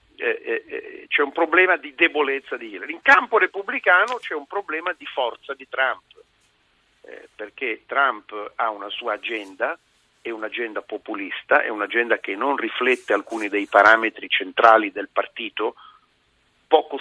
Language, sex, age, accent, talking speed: Italian, male, 50-69, native, 135 wpm